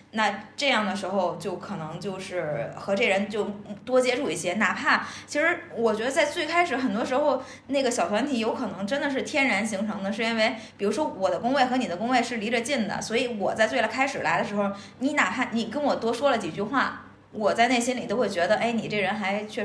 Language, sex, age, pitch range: Chinese, female, 20-39, 195-255 Hz